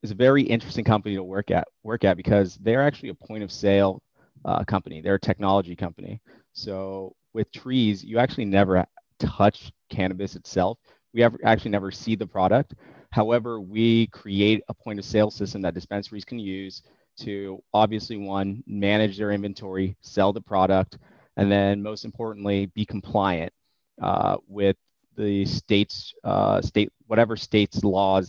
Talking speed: 160 wpm